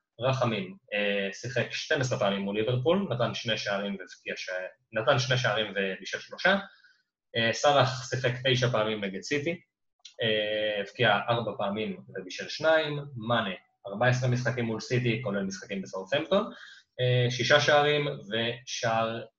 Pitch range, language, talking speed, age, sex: 115-135 Hz, Hebrew, 120 wpm, 20-39, male